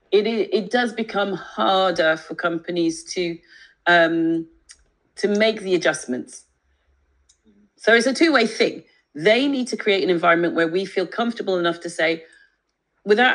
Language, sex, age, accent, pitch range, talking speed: English, female, 40-59, British, 165-220 Hz, 145 wpm